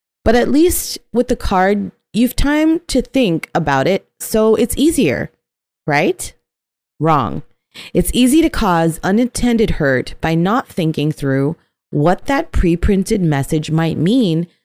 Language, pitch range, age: English, 155-240 Hz, 30-49